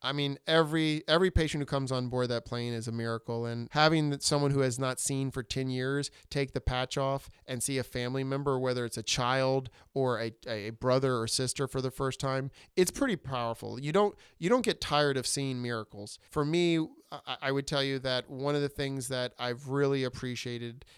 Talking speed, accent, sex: 210 wpm, American, male